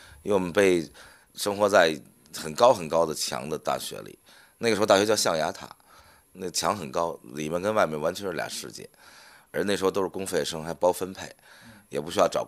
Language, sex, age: Chinese, male, 30-49